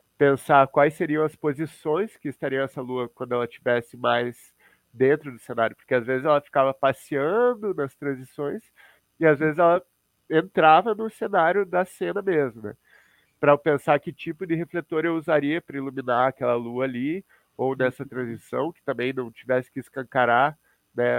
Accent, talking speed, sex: Brazilian, 160 wpm, male